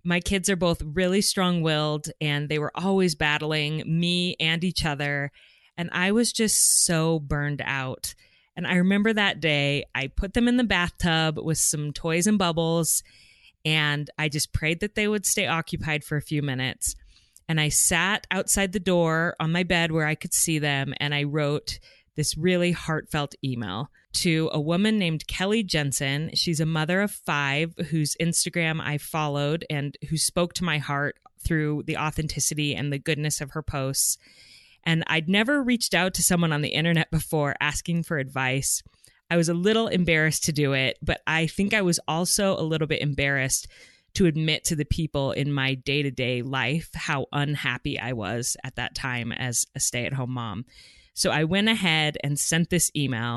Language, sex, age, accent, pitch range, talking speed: English, female, 20-39, American, 145-175 Hz, 180 wpm